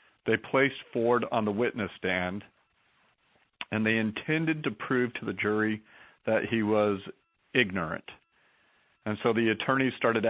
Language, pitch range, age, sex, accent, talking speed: English, 100-115 Hz, 40-59, male, American, 140 wpm